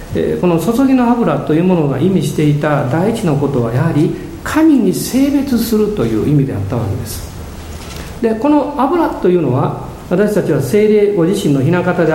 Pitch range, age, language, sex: 135-215 Hz, 50-69, Japanese, male